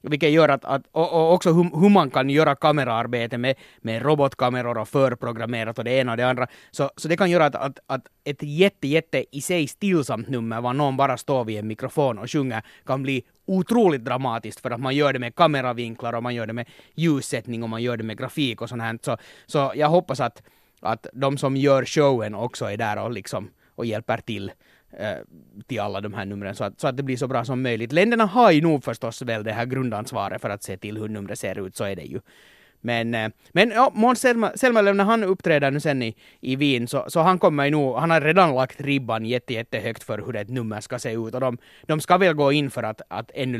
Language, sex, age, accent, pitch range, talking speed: Finnish, male, 30-49, native, 115-155 Hz, 235 wpm